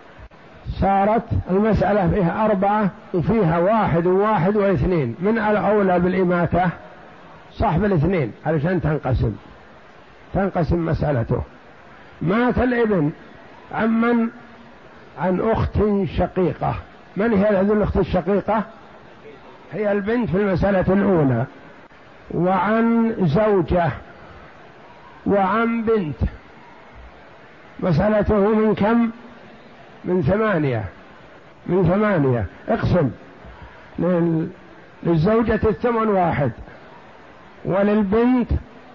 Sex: male